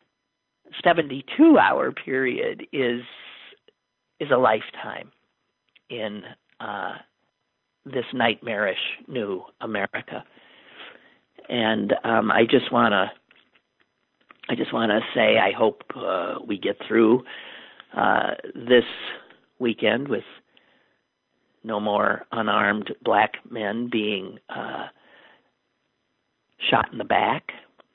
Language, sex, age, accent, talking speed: English, male, 50-69, American, 95 wpm